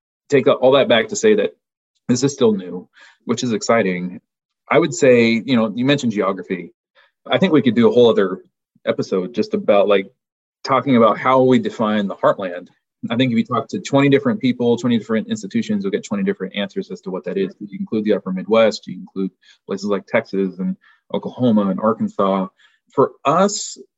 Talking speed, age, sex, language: 200 wpm, 30-49, male, English